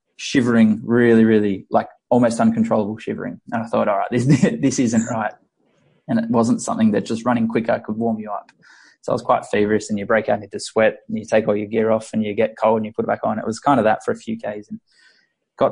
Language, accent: English, Australian